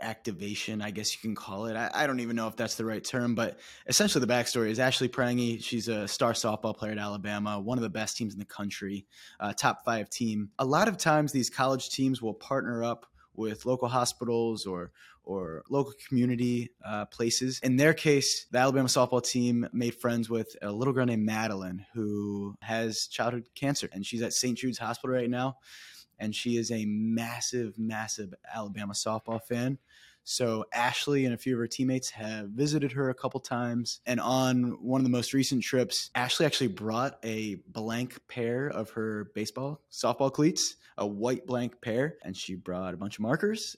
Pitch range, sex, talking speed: 110-130 Hz, male, 195 wpm